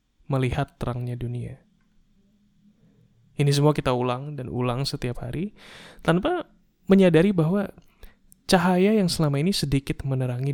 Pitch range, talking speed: 125-155 Hz, 115 wpm